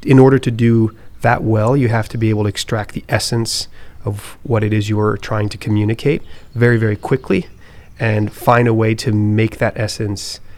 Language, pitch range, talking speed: English, 100-120 Hz, 200 wpm